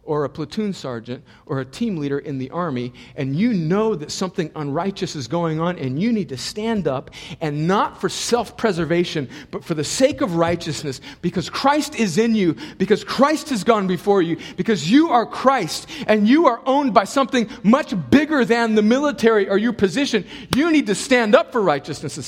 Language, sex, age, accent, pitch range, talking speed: English, male, 40-59, American, 120-190 Hz, 195 wpm